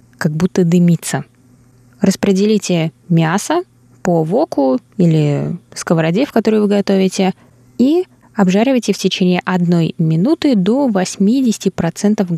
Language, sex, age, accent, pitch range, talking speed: Russian, female, 20-39, native, 155-200 Hz, 100 wpm